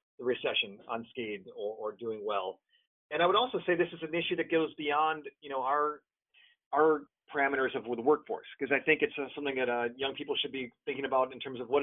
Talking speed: 225 wpm